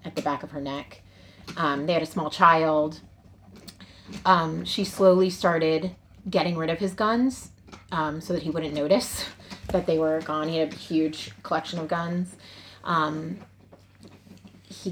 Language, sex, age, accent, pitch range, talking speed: English, female, 30-49, American, 145-175 Hz, 160 wpm